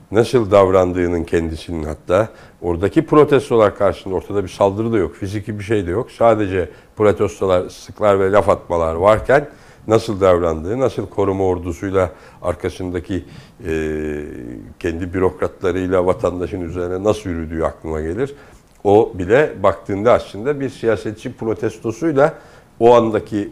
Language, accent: Turkish, native